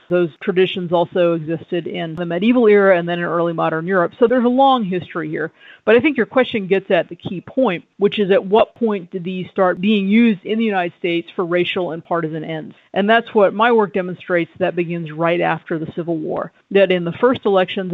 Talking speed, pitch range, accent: 225 wpm, 170-205 Hz, American